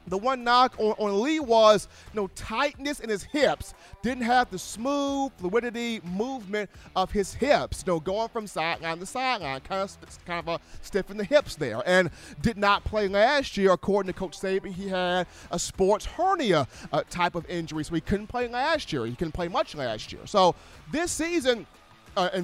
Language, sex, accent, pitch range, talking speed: English, male, American, 175-245 Hz, 205 wpm